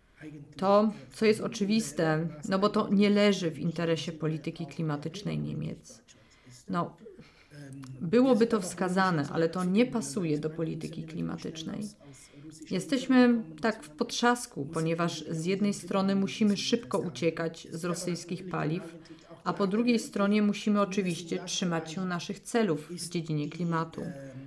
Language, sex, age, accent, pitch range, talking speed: Polish, female, 30-49, native, 170-215 Hz, 130 wpm